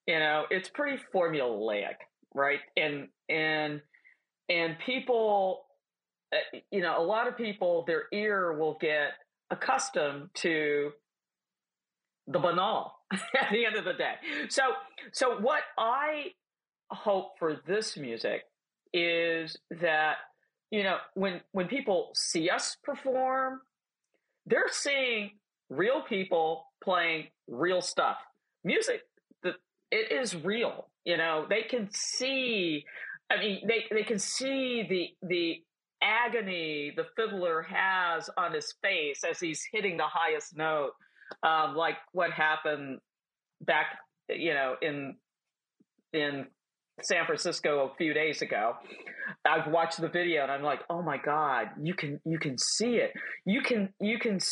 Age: 40-59